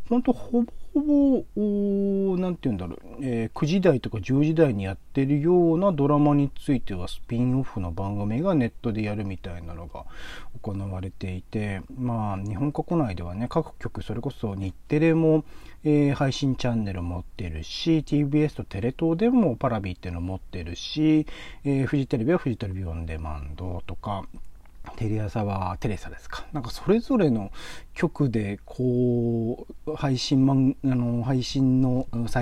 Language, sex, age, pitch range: Japanese, male, 40-59, 105-165 Hz